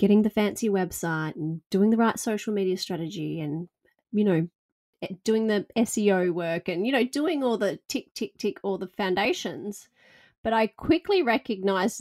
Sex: female